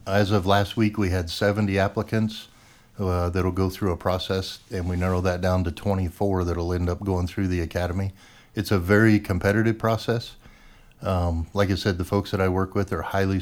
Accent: American